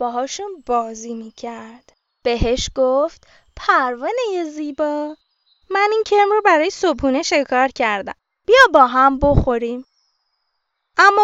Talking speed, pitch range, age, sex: 115 wpm, 235-400 Hz, 20-39, female